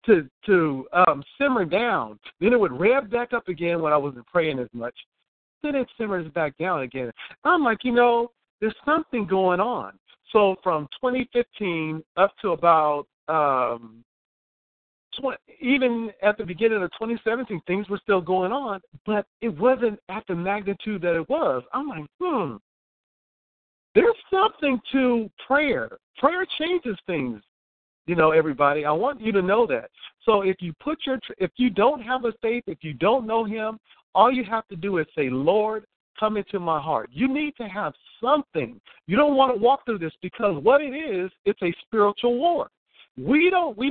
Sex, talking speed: male, 180 wpm